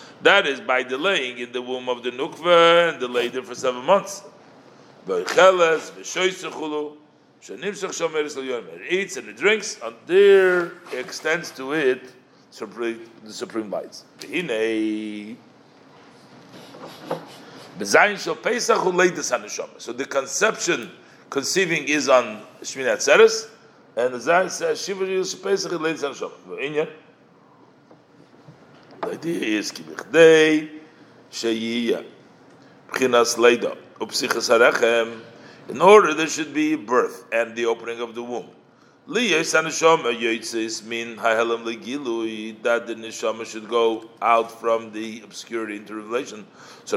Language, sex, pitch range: English, male, 115-180 Hz